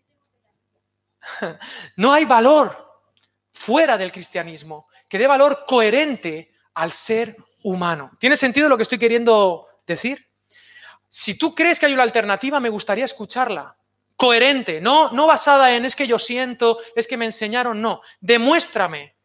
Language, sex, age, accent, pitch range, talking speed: Spanish, male, 30-49, Spanish, 165-250 Hz, 140 wpm